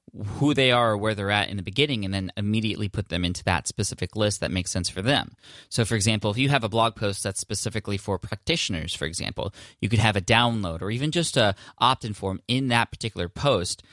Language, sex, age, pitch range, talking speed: English, male, 20-39, 95-115 Hz, 235 wpm